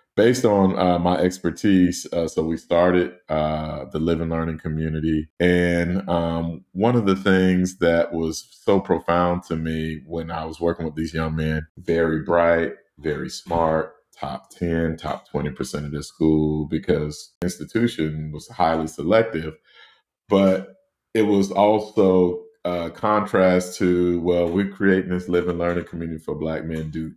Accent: American